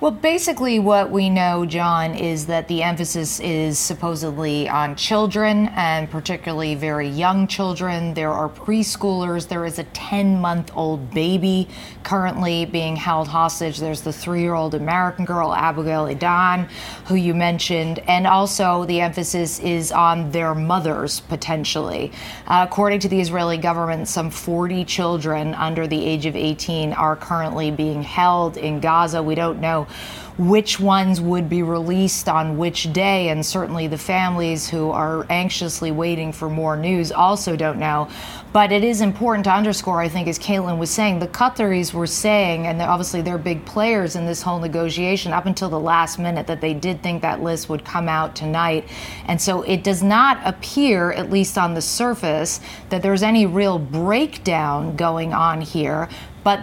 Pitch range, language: 165-190 Hz, English